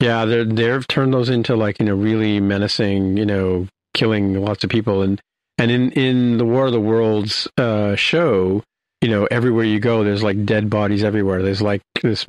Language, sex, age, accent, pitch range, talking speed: English, male, 50-69, American, 100-115 Hz, 200 wpm